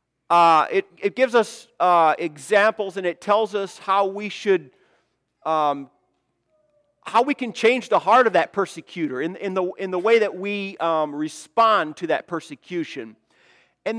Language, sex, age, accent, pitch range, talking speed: English, male, 40-59, American, 175-245 Hz, 165 wpm